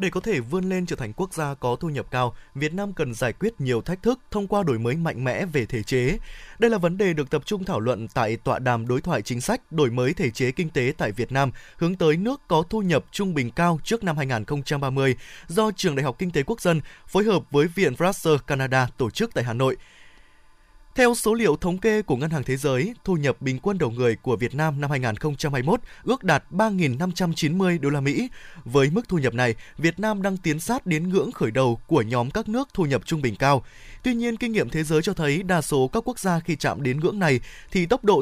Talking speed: 245 wpm